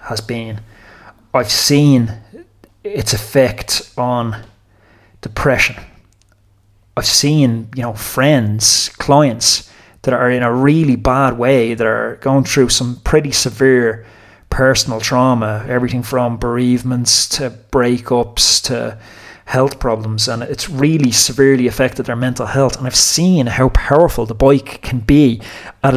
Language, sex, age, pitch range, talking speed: English, male, 30-49, 115-145 Hz, 130 wpm